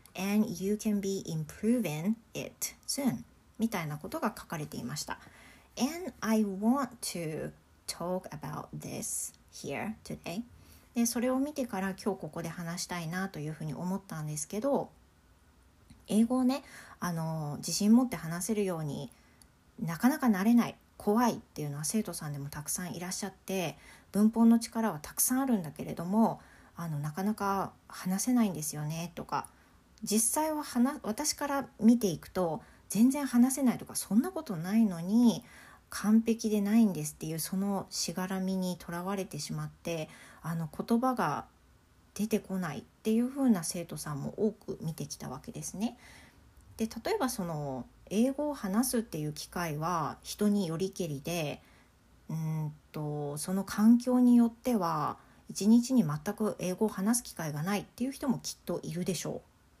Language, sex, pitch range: English, female, 165-230 Hz